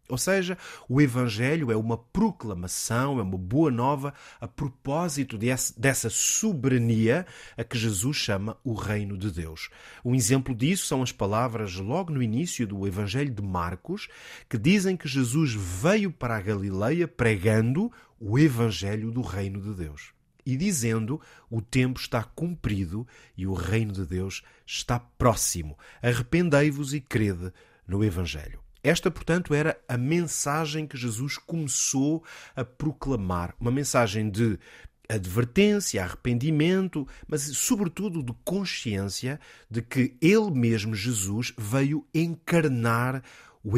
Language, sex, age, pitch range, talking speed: Portuguese, male, 30-49, 110-150 Hz, 130 wpm